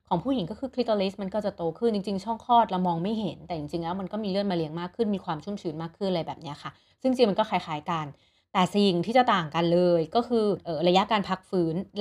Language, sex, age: Thai, female, 30-49